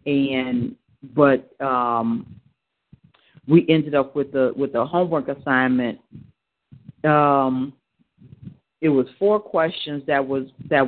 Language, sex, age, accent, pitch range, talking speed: English, female, 40-59, American, 135-170 Hz, 110 wpm